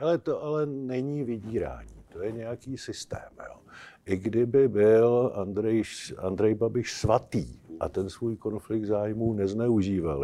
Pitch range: 100-125 Hz